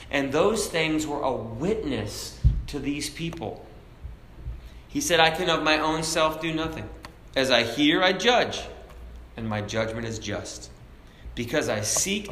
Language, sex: English, male